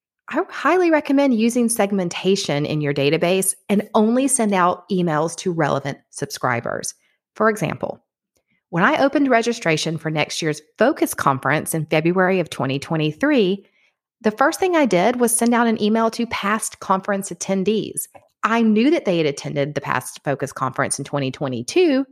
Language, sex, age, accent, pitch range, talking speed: English, female, 40-59, American, 165-240 Hz, 155 wpm